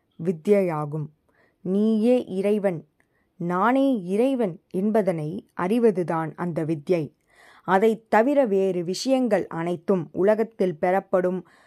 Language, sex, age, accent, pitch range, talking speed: Tamil, female, 20-39, native, 180-225 Hz, 80 wpm